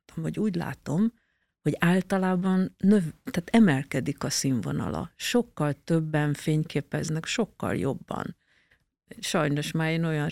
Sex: female